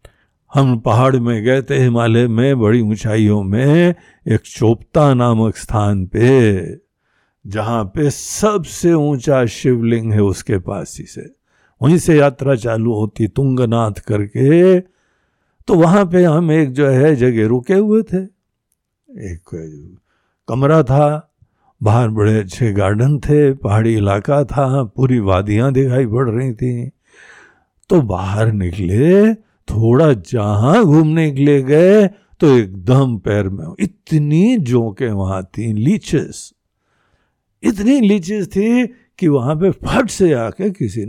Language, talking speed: Hindi, 130 wpm